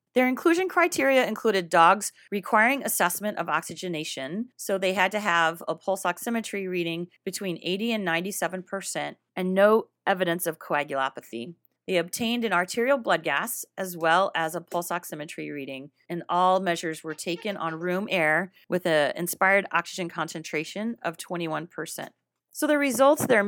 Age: 30-49